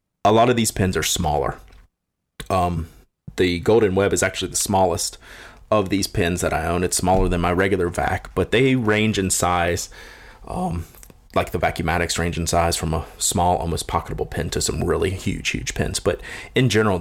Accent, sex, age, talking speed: American, male, 30-49, 190 wpm